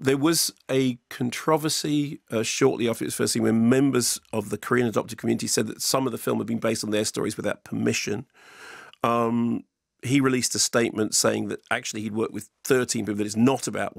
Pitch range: 115-135 Hz